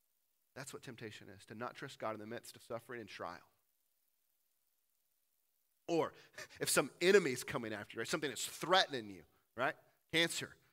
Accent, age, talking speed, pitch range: American, 30-49, 160 wpm, 140-205 Hz